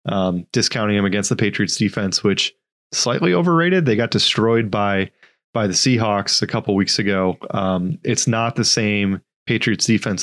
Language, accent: English, American